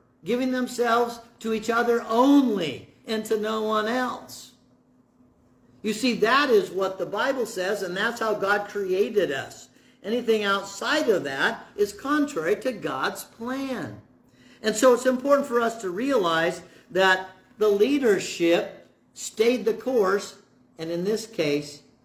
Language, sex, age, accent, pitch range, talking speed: English, male, 50-69, American, 160-225 Hz, 140 wpm